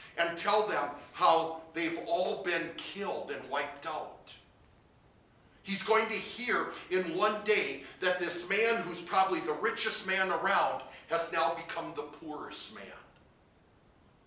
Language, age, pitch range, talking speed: English, 50-69, 150-210 Hz, 140 wpm